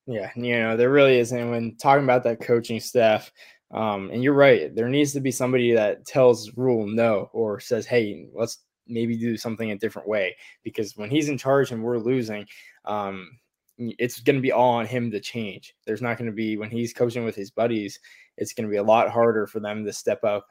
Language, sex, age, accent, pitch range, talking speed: English, male, 20-39, American, 105-120 Hz, 220 wpm